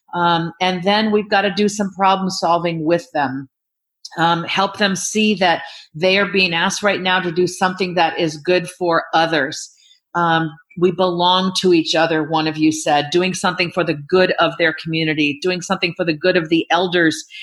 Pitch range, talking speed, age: 160-200 Hz, 195 wpm, 40-59